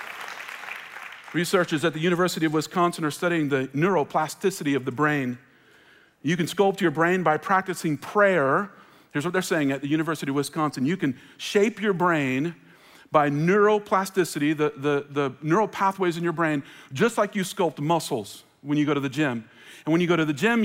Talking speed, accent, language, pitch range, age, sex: 180 wpm, American, English, 155-195 Hz, 40-59, male